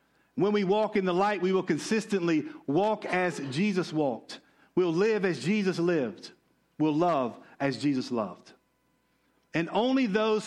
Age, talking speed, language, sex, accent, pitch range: 50-69, 150 wpm, English, male, American, 155-210 Hz